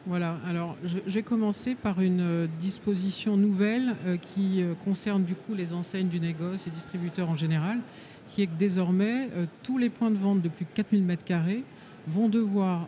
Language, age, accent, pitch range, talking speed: French, 50-69, French, 170-205 Hz, 185 wpm